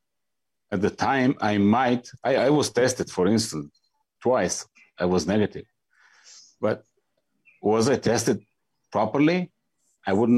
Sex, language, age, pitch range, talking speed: male, Dutch, 60-79, 95-120 Hz, 120 wpm